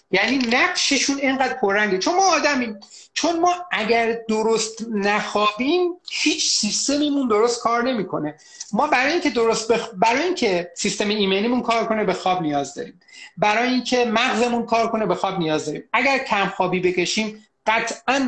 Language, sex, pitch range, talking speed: Persian, male, 180-240 Hz, 150 wpm